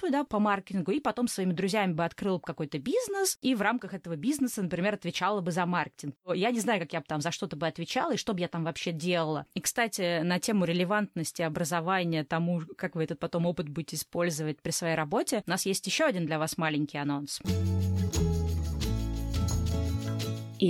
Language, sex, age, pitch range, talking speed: Russian, female, 20-39, 155-200 Hz, 195 wpm